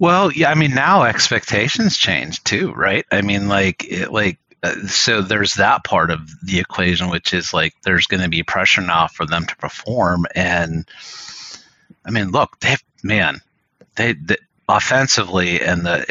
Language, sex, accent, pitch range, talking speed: English, male, American, 95-115 Hz, 170 wpm